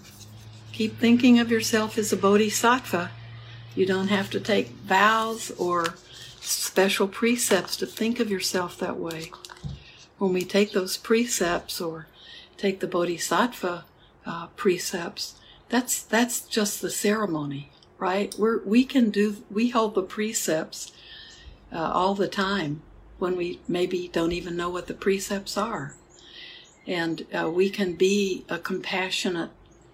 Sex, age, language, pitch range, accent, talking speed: female, 60-79, English, 170-210 Hz, American, 135 wpm